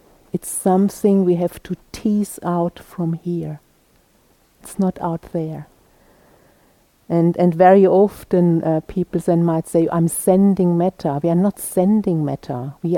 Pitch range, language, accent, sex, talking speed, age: 165-200 Hz, English, German, female, 145 wpm, 50-69